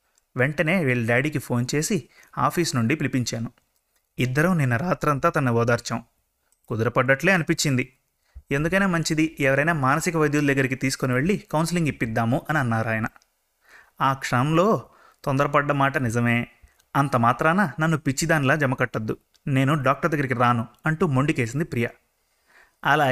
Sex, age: male, 30-49